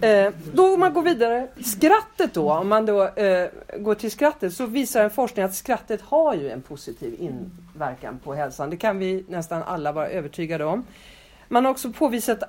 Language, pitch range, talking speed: Swedish, 200-295 Hz, 195 wpm